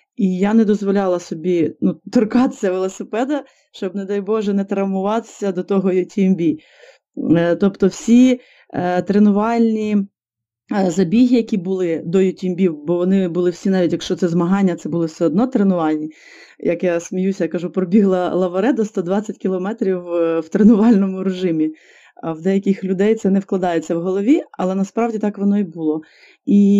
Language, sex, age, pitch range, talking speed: Ukrainian, female, 20-39, 175-220 Hz, 150 wpm